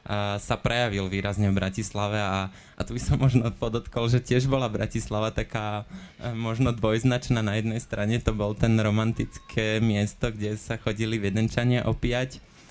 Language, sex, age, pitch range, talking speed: Slovak, male, 20-39, 105-120 Hz, 150 wpm